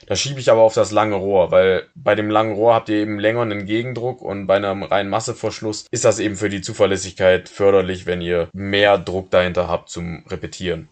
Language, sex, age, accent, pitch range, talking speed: German, male, 20-39, German, 95-120 Hz, 215 wpm